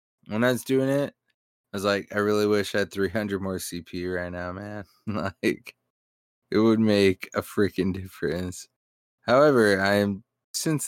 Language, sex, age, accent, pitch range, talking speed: English, male, 20-39, American, 95-115 Hz, 160 wpm